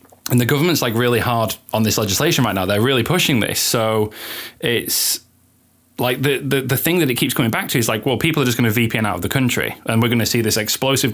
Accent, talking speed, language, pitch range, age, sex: British, 260 wpm, English, 110-135 Hz, 10-29, male